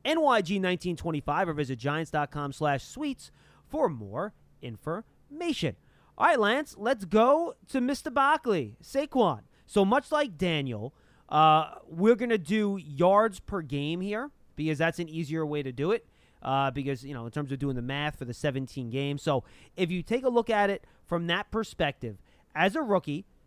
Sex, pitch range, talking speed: male, 140-200 Hz, 175 wpm